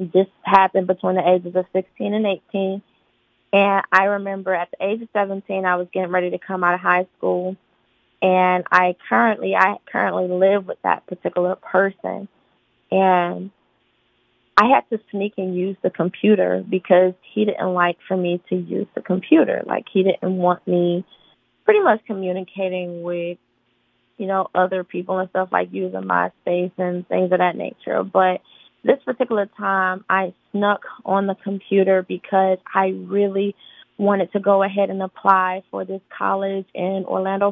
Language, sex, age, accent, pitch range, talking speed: English, female, 20-39, American, 180-200 Hz, 165 wpm